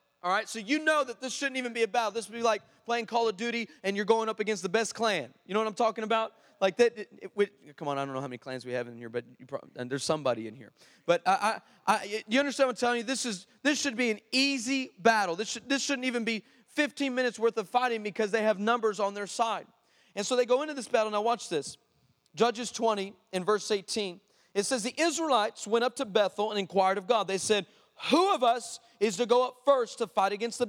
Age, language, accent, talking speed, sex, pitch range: 30-49, English, American, 265 wpm, male, 205-245 Hz